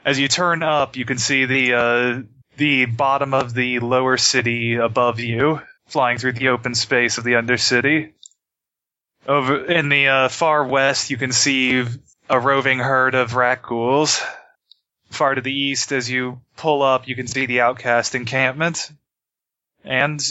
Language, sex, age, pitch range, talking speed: English, male, 20-39, 120-140 Hz, 165 wpm